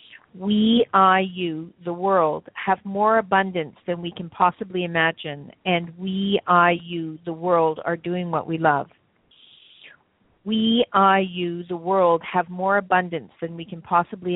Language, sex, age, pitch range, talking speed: English, female, 40-59, 165-190 Hz, 150 wpm